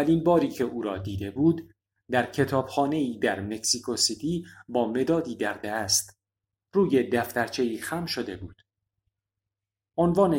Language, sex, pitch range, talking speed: Persian, male, 100-140 Hz, 125 wpm